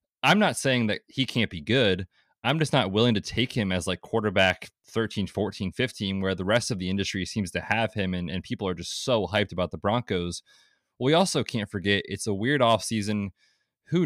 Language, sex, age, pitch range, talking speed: English, male, 20-39, 95-115 Hz, 215 wpm